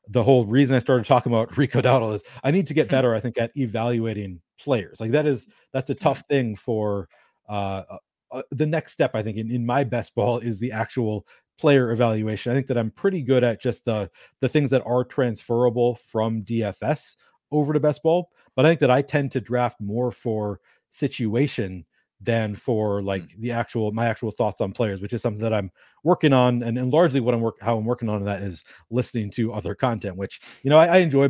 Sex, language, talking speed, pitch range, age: male, English, 220 wpm, 105-135 Hz, 30-49